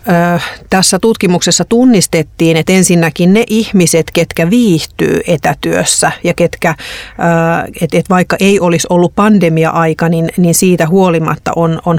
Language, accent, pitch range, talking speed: Finnish, native, 165-195 Hz, 115 wpm